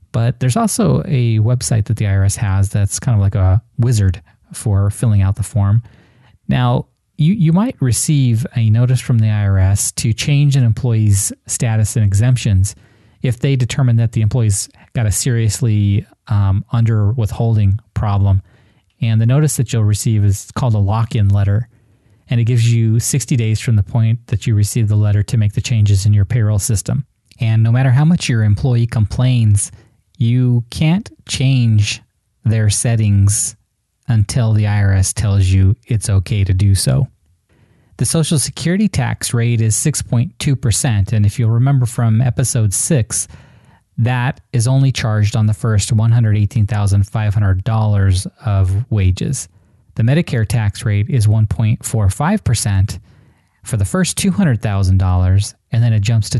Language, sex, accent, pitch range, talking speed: English, male, American, 105-125 Hz, 155 wpm